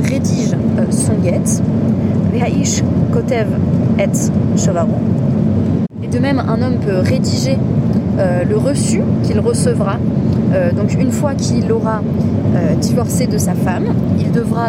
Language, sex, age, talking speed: French, female, 20-39, 125 wpm